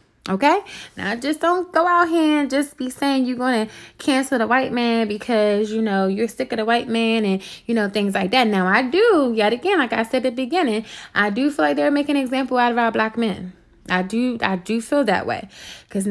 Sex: female